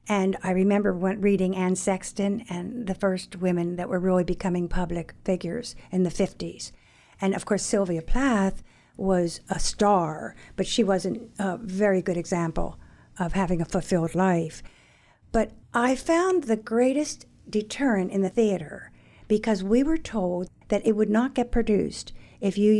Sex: female